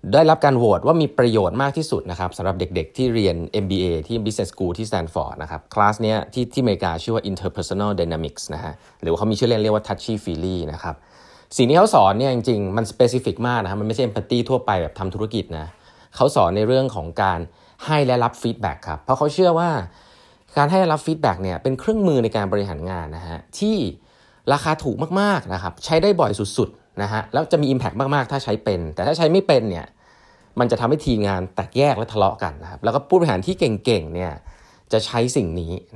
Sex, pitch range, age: male, 90-125 Hz, 20-39